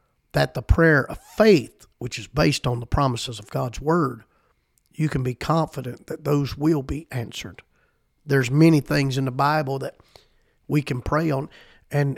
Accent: American